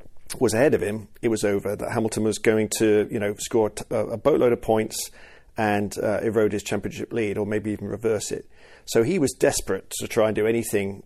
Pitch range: 105-120 Hz